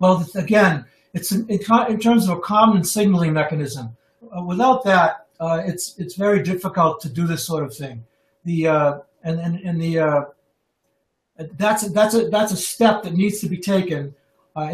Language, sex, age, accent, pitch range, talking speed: English, male, 60-79, American, 155-195 Hz, 185 wpm